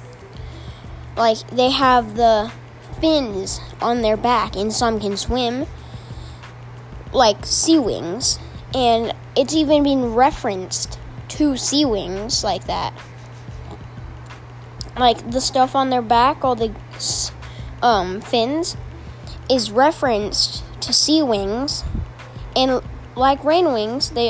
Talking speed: 110 wpm